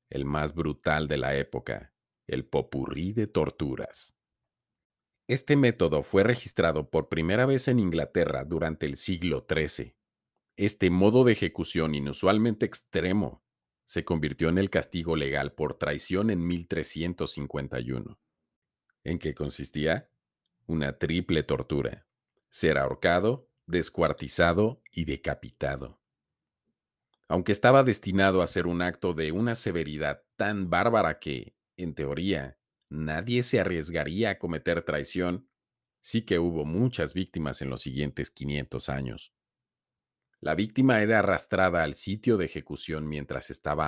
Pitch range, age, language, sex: 75-100 Hz, 50-69, Spanish, male